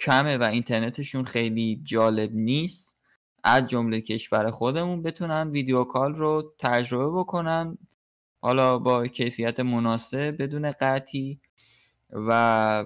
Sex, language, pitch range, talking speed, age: male, Persian, 110-140 Hz, 105 wpm, 20-39